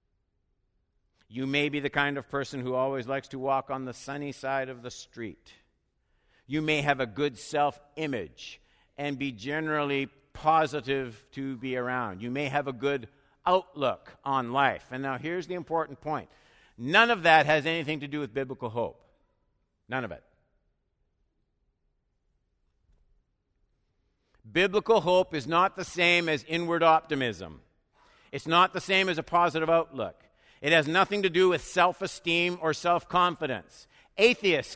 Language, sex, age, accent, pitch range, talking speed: English, male, 60-79, American, 110-155 Hz, 150 wpm